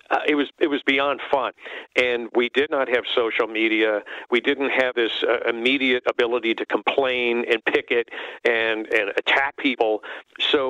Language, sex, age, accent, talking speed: English, male, 50-69, American, 170 wpm